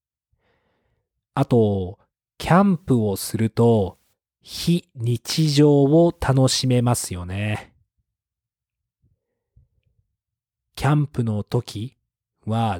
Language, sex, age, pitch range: Japanese, male, 40-59, 105-150 Hz